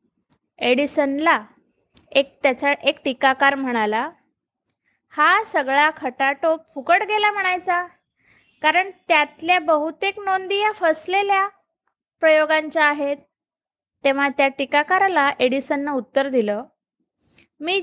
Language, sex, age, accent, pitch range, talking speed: Marathi, female, 20-39, native, 265-350 Hz, 90 wpm